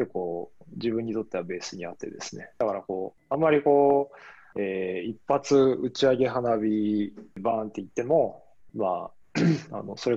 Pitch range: 110-135 Hz